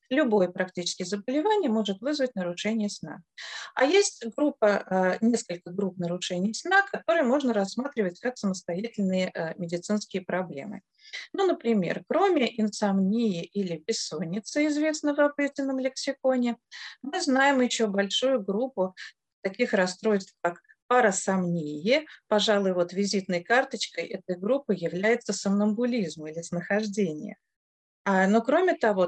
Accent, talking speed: native, 105 wpm